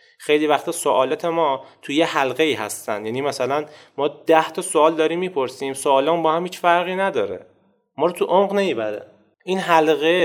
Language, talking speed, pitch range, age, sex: Persian, 180 wpm, 135-175 Hz, 30-49, male